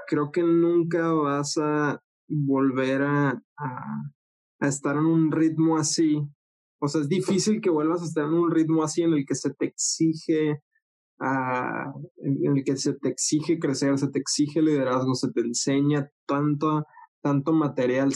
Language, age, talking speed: Spanish, 20-39, 165 wpm